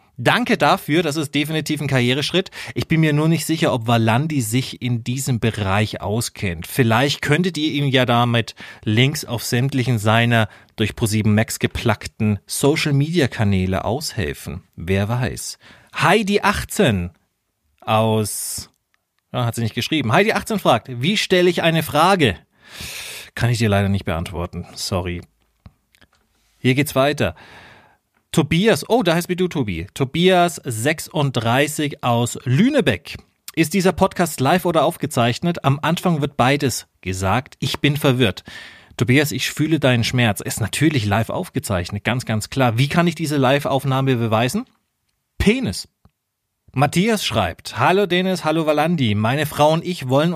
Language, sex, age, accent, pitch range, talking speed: German, male, 40-59, German, 110-160 Hz, 140 wpm